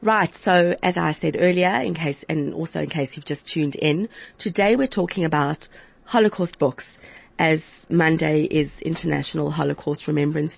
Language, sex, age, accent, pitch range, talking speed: English, female, 30-49, British, 150-180 Hz, 160 wpm